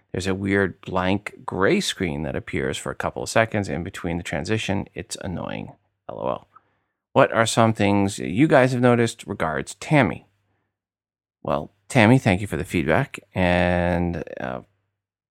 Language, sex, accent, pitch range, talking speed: English, male, American, 90-115 Hz, 155 wpm